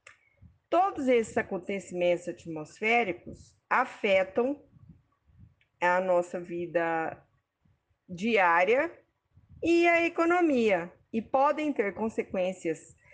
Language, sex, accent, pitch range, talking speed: Portuguese, female, Brazilian, 185-250 Hz, 75 wpm